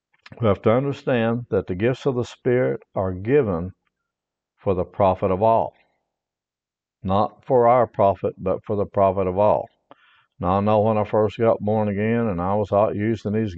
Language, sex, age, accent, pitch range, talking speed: English, male, 60-79, American, 100-120 Hz, 185 wpm